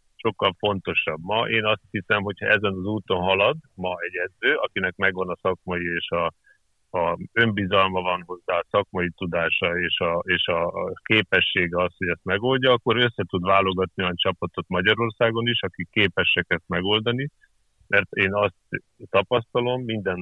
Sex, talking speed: male, 150 wpm